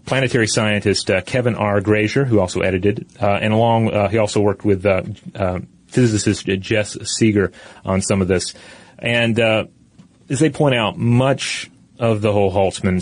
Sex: male